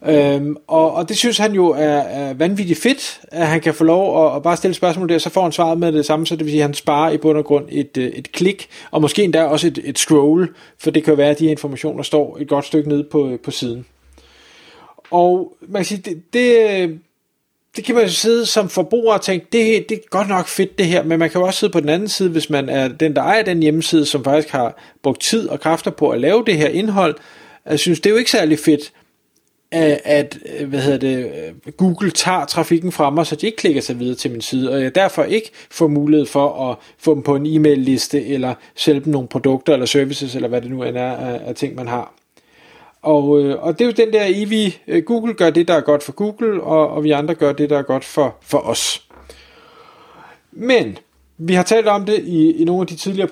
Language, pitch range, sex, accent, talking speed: Danish, 145-185 Hz, male, native, 245 wpm